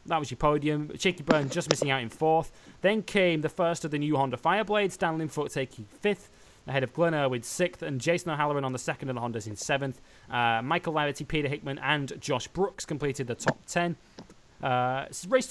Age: 20-39